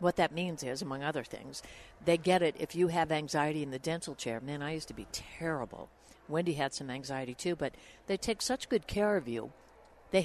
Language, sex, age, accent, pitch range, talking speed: English, female, 60-79, American, 145-190 Hz, 225 wpm